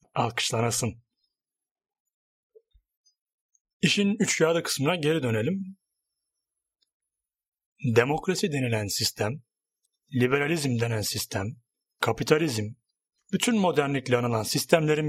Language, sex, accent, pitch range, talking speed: Turkish, male, native, 115-170 Hz, 70 wpm